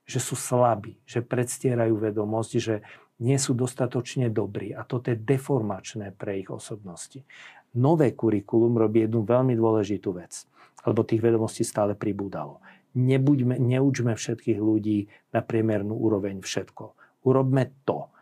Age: 50-69